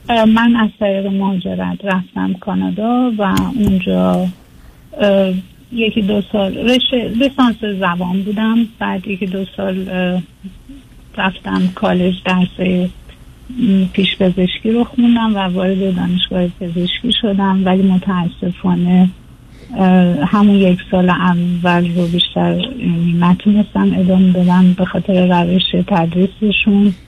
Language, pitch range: Persian, 175-200 Hz